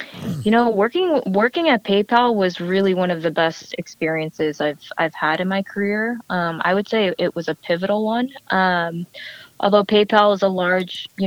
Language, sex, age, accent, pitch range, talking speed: English, female, 20-39, American, 170-200 Hz, 185 wpm